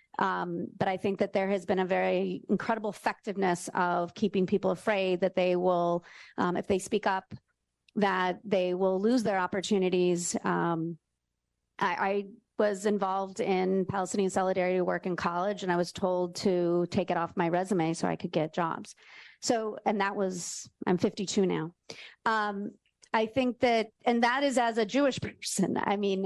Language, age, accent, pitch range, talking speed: English, 40-59, American, 185-215 Hz, 175 wpm